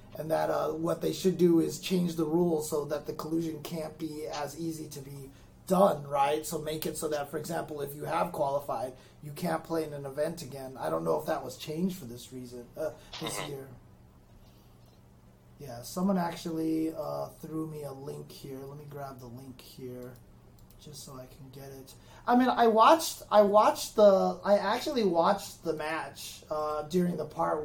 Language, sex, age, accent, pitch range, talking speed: English, male, 30-49, American, 150-210 Hz, 200 wpm